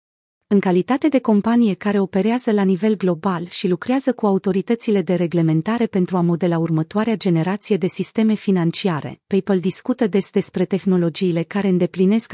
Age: 30-49